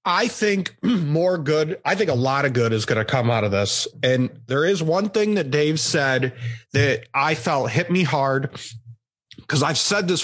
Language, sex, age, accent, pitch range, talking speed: English, male, 30-49, American, 125-160 Hz, 205 wpm